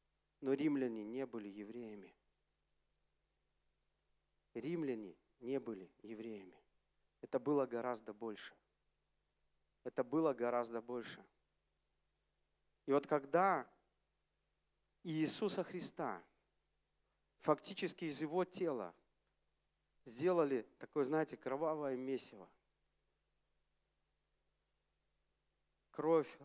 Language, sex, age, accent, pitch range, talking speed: Russian, male, 40-59, native, 105-150 Hz, 75 wpm